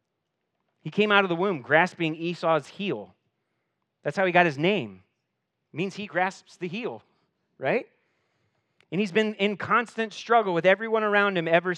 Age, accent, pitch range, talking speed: 30-49, American, 135-180 Hz, 165 wpm